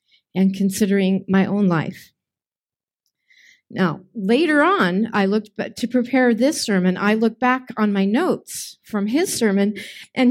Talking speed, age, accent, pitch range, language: 140 wpm, 50-69, American, 185-240 Hz, English